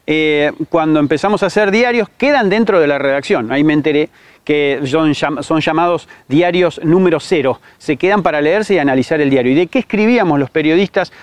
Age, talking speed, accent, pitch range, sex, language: 40-59, 185 wpm, Argentinian, 150-210 Hz, male, Spanish